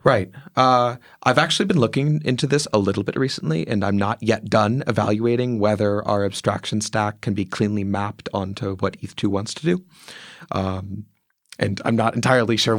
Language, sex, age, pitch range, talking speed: English, male, 30-49, 100-125 Hz, 180 wpm